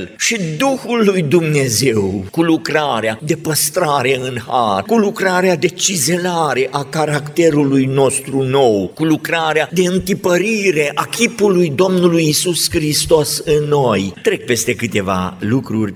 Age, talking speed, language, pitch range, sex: 50-69, 125 wpm, Romanian, 115-170 Hz, male